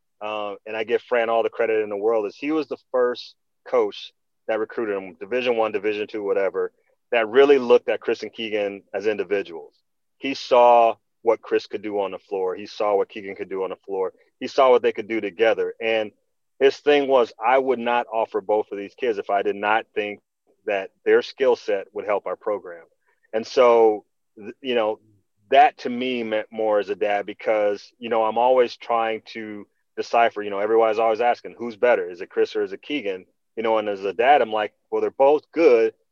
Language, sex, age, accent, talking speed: English, male, 30-49, American, 215 wpm